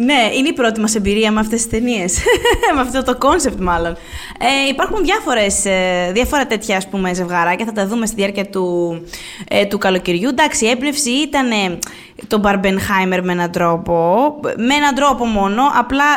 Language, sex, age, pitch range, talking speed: Greek, female, 20-39, 190-270 Hz, 170 wpm